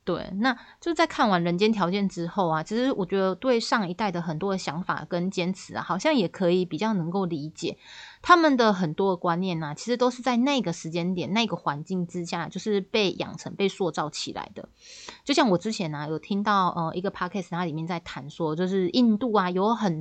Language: Chinese